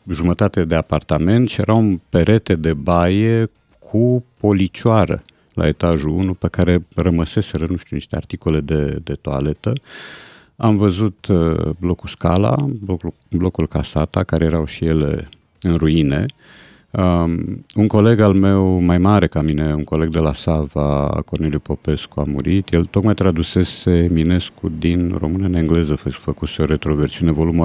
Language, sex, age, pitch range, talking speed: Romanian, male, 50-69, 75-95 Hz, 150 wpm